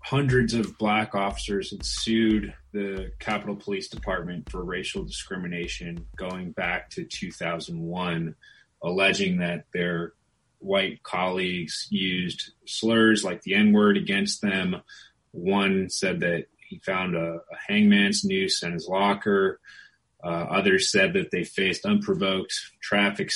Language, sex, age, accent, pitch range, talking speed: English, male, 30-49, American, 95-130 Hz, 125 wpm